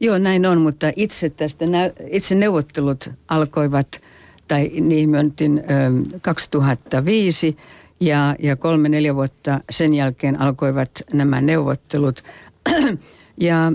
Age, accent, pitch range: 60-79, native, 140-170 Hz